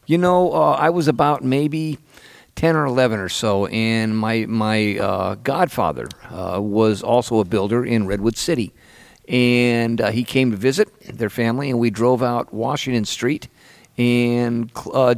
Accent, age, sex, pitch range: American, 50-69, male, 105-130 Hz